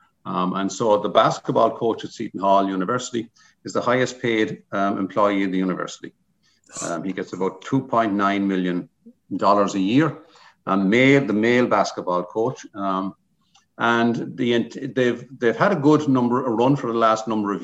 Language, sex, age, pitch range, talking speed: English, male, 50-69, 95-125 Hz, 170 wpm